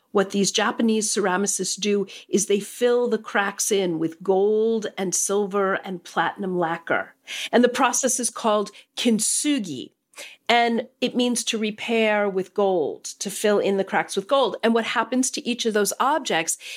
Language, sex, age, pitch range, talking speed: English, female, 40-59, 195-235 Hz, 165 wpm